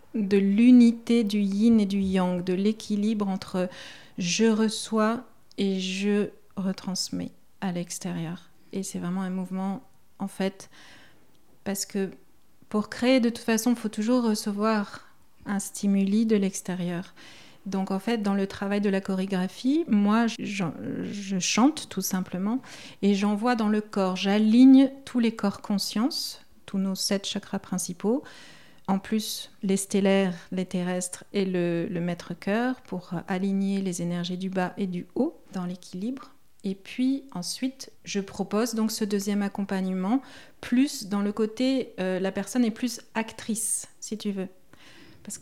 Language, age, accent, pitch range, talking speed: French, 40-59, French, 190-220 Hz, 150 wpm